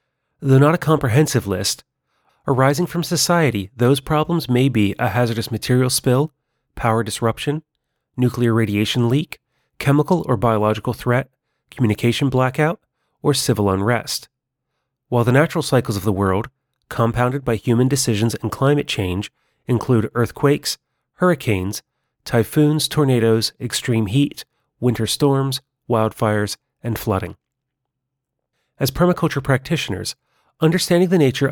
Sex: male